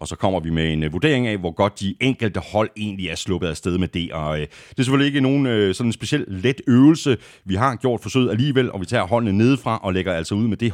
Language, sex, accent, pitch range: Danish, male, native, 90-125 Hz